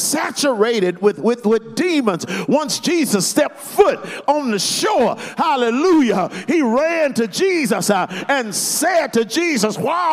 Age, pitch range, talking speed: 50-69, 185-275 Hz, 130 wpm